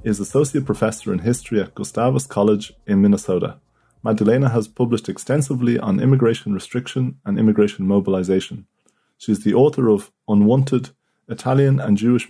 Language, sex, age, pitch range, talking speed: English, male, 30-49, 100-125 Hz, 140 wpm